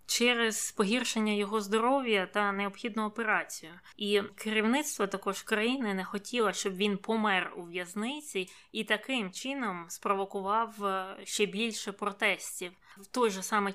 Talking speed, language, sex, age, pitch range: 125 wpm, Ukrainian, female, 20-39, 195-225 Hz